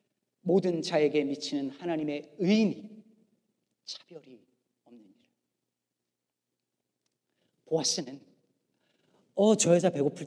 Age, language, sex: 40-59, Korean, male